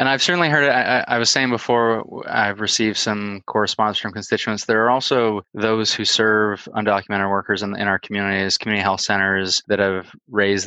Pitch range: 100-110 Hz